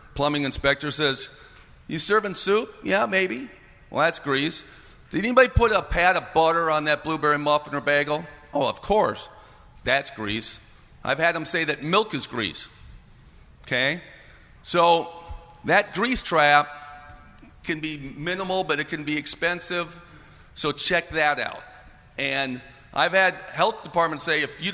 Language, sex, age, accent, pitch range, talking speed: English, male, 50-69, American, 140-175 Hz, 150 wpm